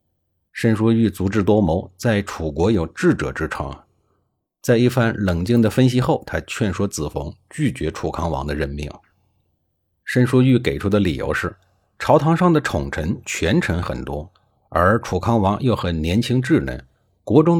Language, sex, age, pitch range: Chinese, male, 50-69, 80-120 Hz